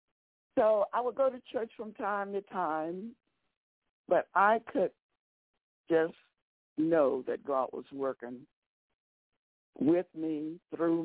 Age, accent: 60-79, American